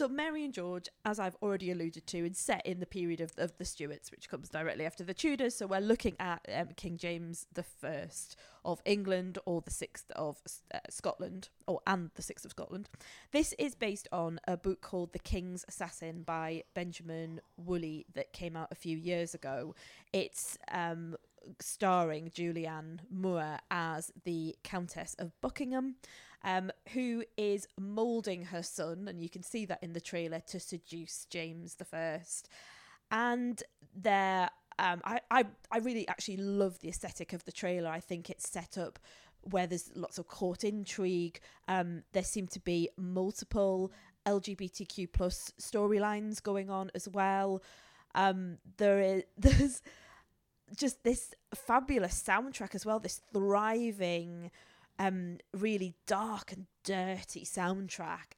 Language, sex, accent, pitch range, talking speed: English, female, British, 175-205 Hz, 155 wpm